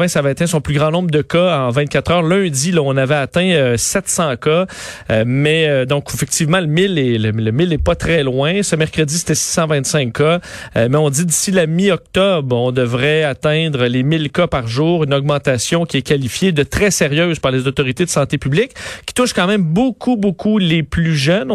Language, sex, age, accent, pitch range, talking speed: French, male, 40-59, Canadian, 125-165 Hz, 210 wpm